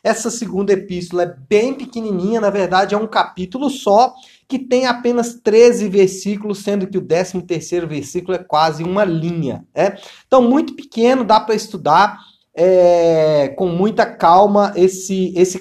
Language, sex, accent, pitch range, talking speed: Portuguese, male, Brazilian, 180-235 Hz, 140 wpm